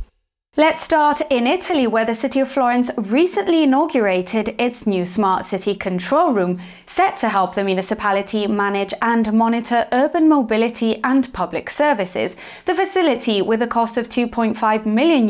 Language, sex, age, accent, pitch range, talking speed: English, female, 20-39, British, 190-255 Hz, 150 wpm